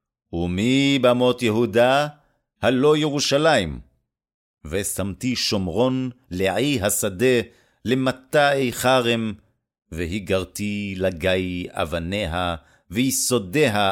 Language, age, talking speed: Hebrew, 50-69, 60 wpm